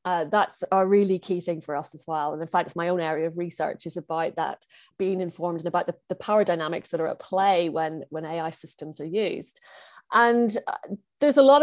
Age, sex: 30-49, female